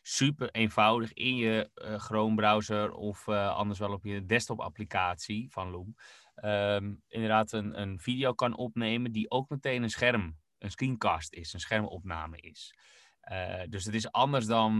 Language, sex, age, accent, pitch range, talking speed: Dutch, male, 20-39, Dutch, 100-115 Hz, 160 wpm